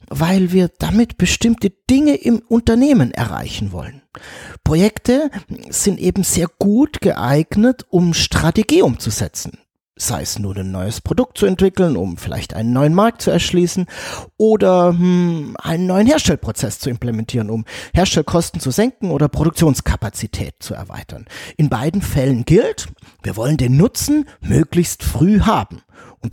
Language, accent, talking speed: German, German, 135 wpm